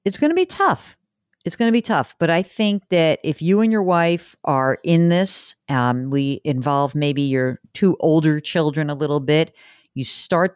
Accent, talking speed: American, 200 wpm